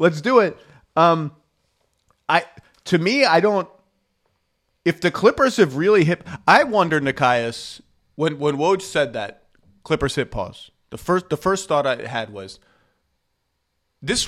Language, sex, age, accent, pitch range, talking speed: English, male, 30-49, American, 130-180 Hz, 145 wpm